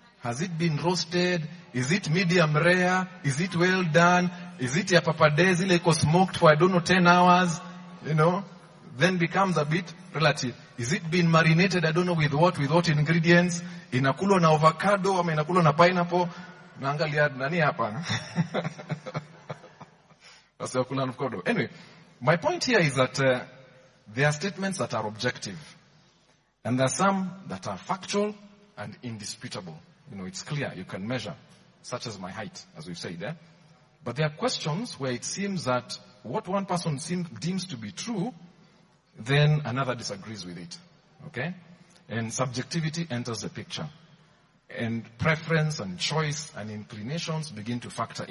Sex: male